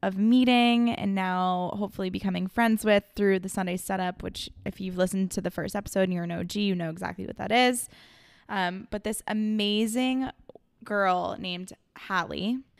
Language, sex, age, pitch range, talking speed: English, female, 20-39, 185-220 Hz, 175 wpm